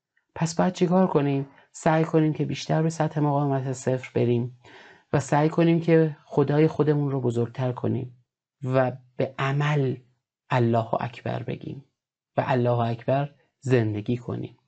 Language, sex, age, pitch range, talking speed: Persian, male, 30-49, 125-160 Hz, 135 wpm